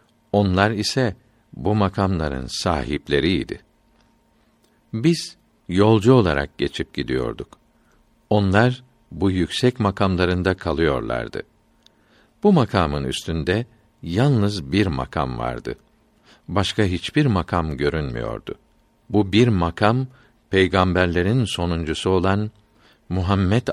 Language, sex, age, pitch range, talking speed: Turkish, male, 60-79, 85-110 Hz, 85 wpm